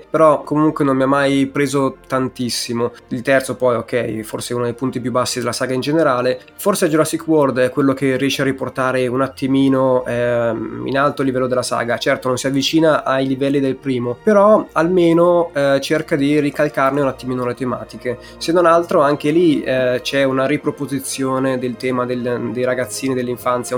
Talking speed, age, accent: 185 wpm, 20-39, native